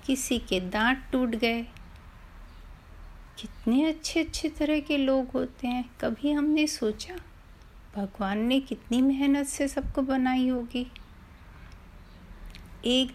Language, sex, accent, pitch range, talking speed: Hindi, female, native, 210-315 Hz, 115 wpm